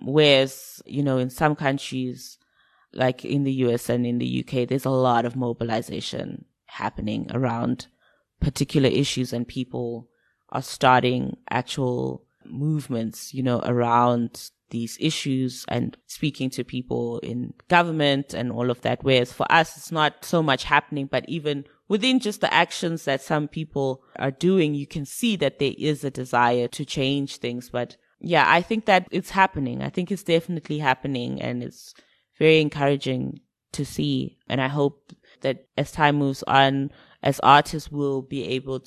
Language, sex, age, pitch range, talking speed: English, female, 20-39, 125-150 Hz, 165 wpm